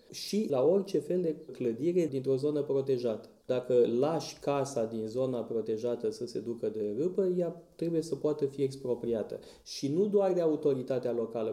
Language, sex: Romanian, male